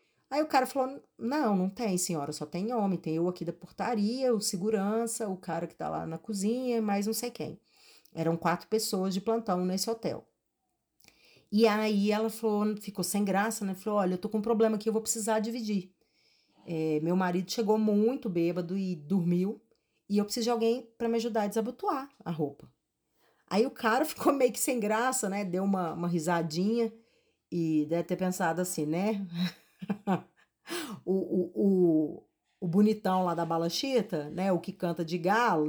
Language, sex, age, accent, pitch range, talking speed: Portuguese, female, 40-59, Brazilian, 180-225 Hz, 180 wpm